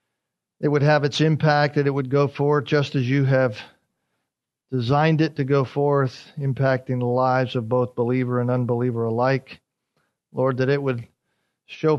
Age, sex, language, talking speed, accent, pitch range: 40-59, male, English, 165 wpm, American, 125-150 Hz